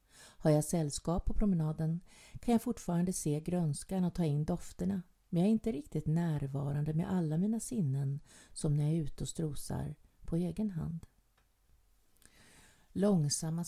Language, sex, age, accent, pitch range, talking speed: Swedish, female, 50-69, native, 150-180 Hz, 155 wpm